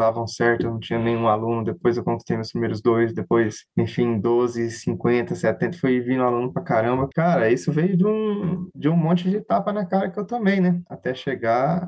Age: 20-39